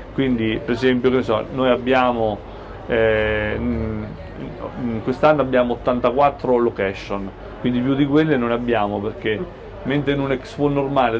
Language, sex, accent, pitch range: Italian, male, native, 110-130 Hz